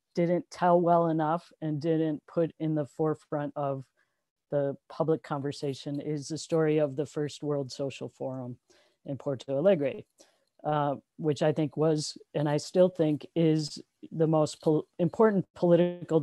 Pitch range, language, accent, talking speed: 150-175 Hz, English, American, 150 wpm